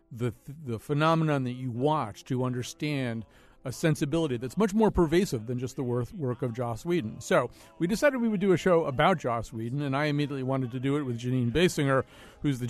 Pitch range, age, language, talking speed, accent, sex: 120-155 Hz, 50-69, English, 210 wpm, American, male